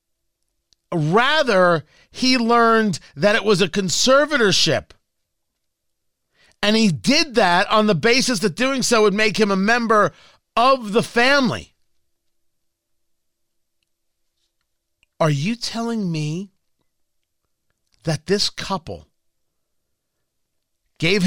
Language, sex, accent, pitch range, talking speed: English, male, American, 155-230 Hz, 95 wpm